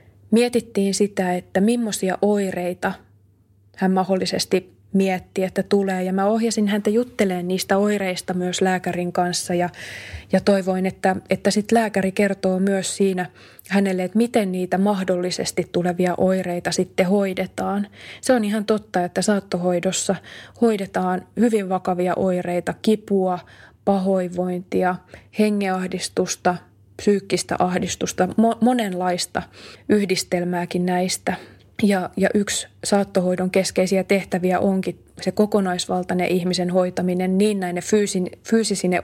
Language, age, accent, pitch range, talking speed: Finnish, 20-39, native, 180-200 Hz, 115 wpm